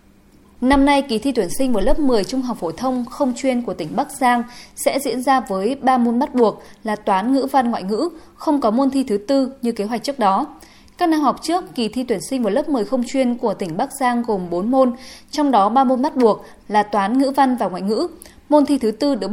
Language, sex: Vietnamese, female